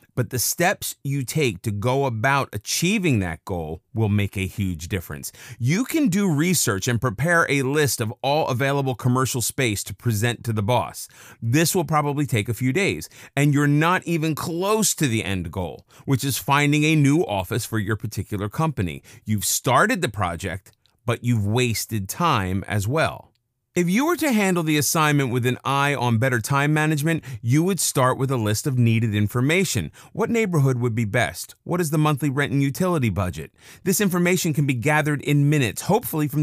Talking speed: 190 wpm